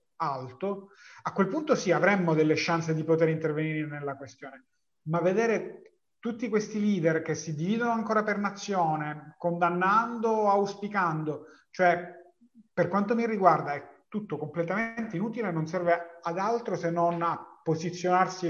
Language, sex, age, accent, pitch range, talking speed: Italian, male, 30-49, native, 155-195 Hz, 145 wpm